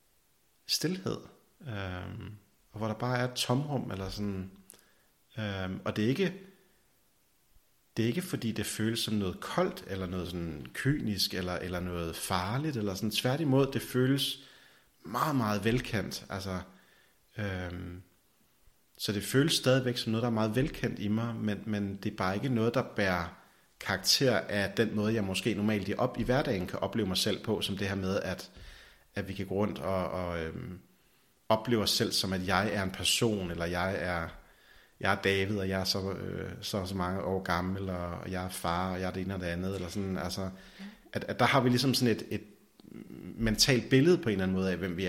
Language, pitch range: Danish, 95-115 Hz